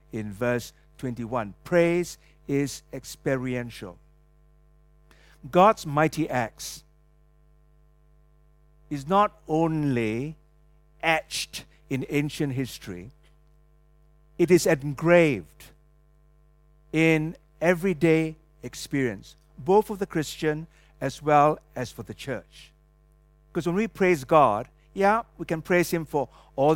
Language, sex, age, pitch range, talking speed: English, male, 50-69, 140-160 Hz, 100 wpm